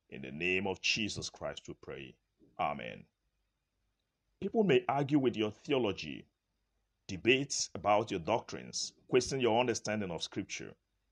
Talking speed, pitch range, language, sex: 130 wpm, 95-120 Hz, English, male